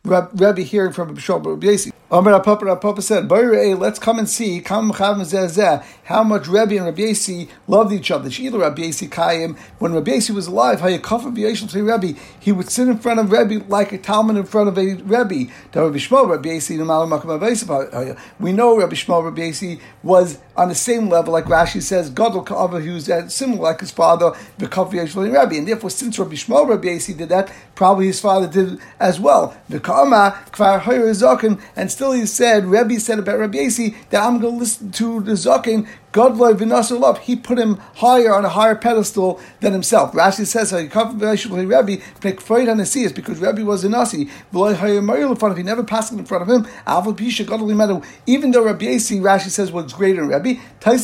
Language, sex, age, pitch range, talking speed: English, male, 50-69, 185-225 Hz, 185 wpm